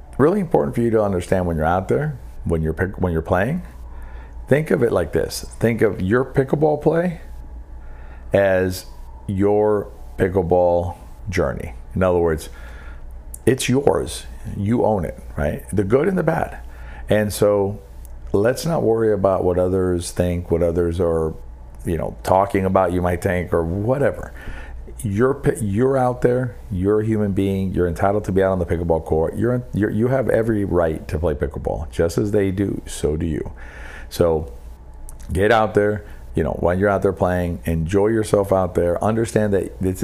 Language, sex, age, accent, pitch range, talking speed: English, male, 50-69, American, 80-105 Hz, 175 wpm